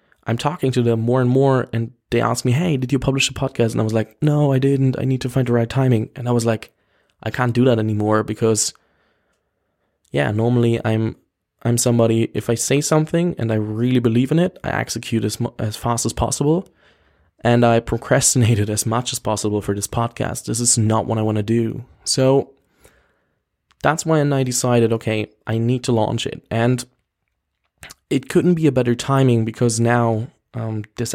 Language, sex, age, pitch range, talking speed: English, male, 20-39, 110-130 Hz, 200 wpm